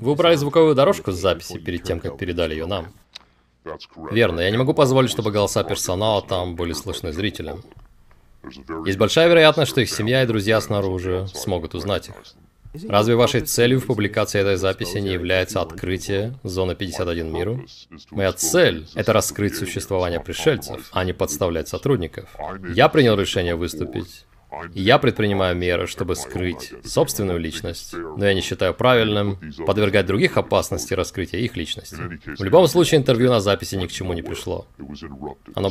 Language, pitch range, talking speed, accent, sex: Russian, 90-130 Hz, 155 wpm, native, male